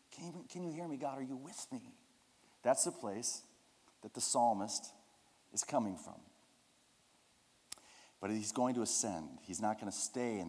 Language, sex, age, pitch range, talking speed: English, male, 50-69, 100-135 Hz, 170 wpm